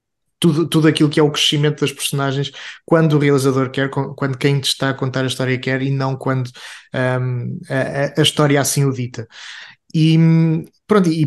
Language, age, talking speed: Portuguese, 20-39, 170 wpm